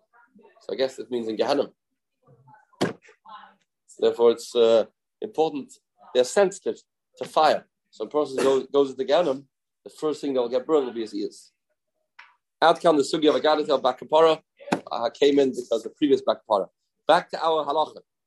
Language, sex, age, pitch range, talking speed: English, male, 30-49, 155-245 Hz, 170 wpm